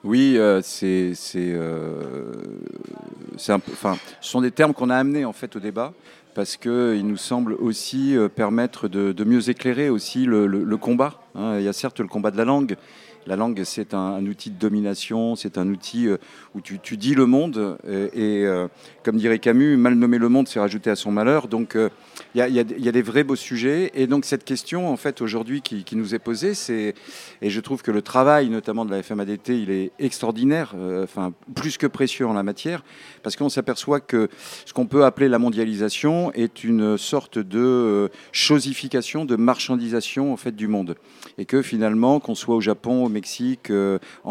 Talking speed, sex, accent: 205 wpm, male, French